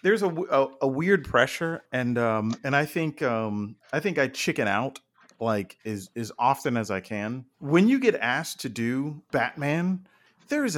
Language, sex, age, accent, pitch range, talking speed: English, male, 40-59, American, 120-170 Hz, 185 wpm